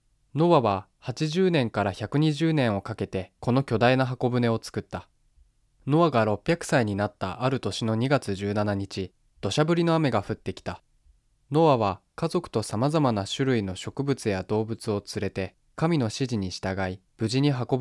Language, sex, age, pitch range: Japanese, male, 20-39, 100-140 Hz